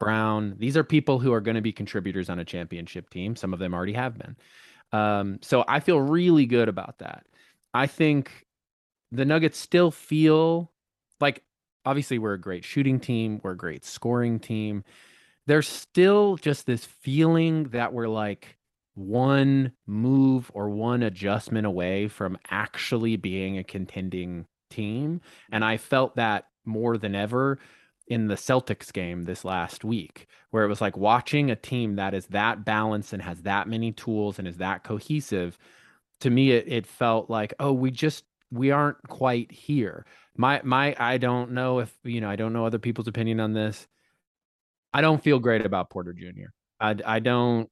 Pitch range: 100-130 Hz